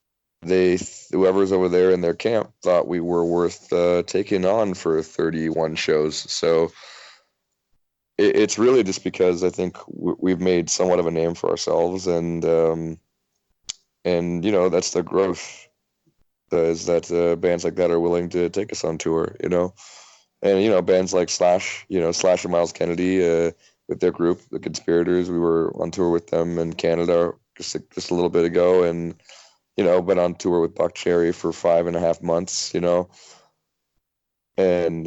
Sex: male